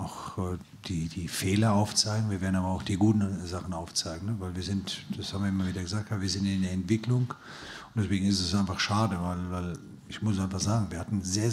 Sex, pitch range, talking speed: male, 95-110 Hz, 220 wpm